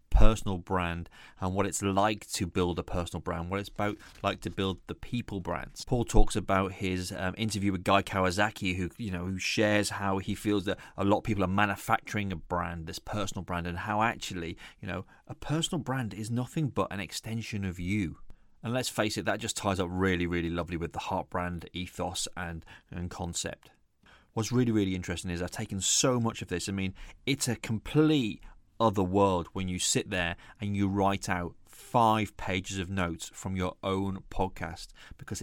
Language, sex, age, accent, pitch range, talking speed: English, male, 30-49, British, 95-115 Hz, 200 wpm